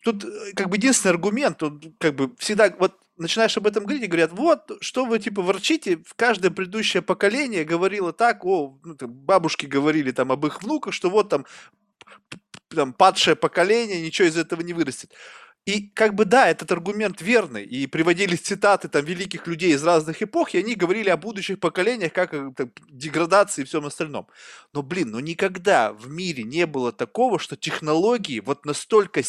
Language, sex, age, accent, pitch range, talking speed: Russian, male, 20-39, native, 155-210 Hz, 175 wpm